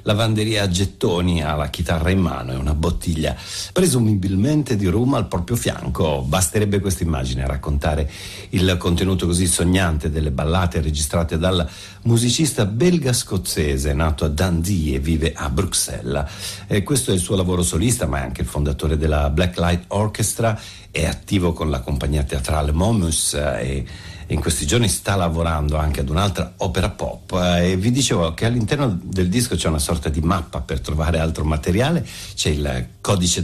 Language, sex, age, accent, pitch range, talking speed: Italian, male, 60-79, native, 80-110 Hz, 165 wpm